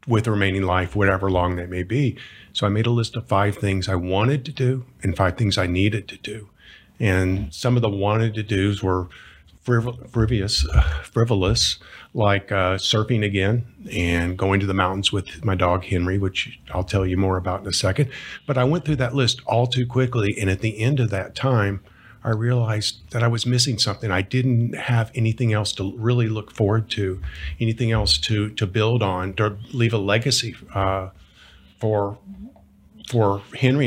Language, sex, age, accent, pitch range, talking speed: English, male, 50-69, American, 95-120 Hz, 190 wpm